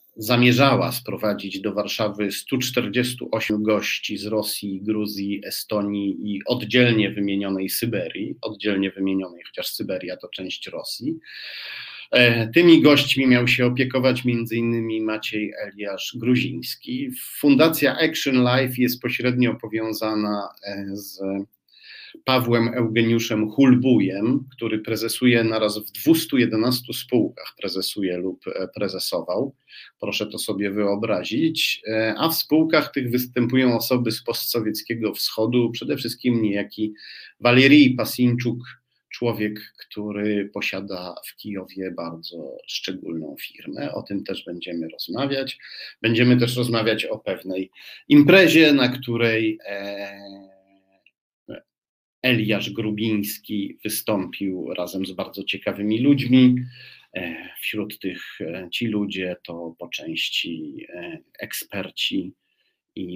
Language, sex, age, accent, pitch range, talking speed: Polish, male, 40-59, native, 100-125 Hz, 100 wpm